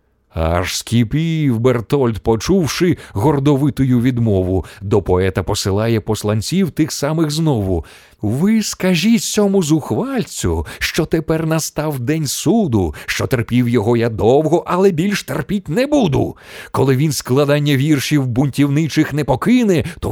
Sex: male